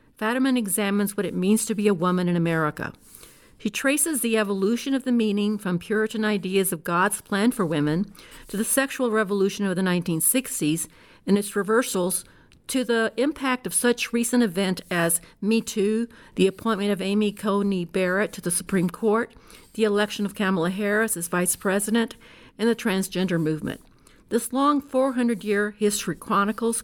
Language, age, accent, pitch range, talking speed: English, 50-69, American, 185-235 Hz, 165 wpm